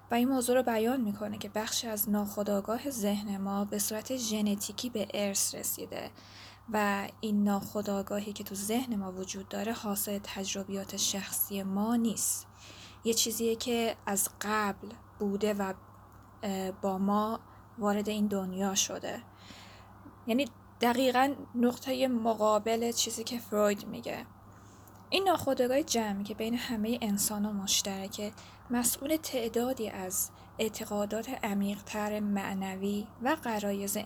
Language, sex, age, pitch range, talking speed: Persian, female, 10-29, 200-240 Hz, 125 wpm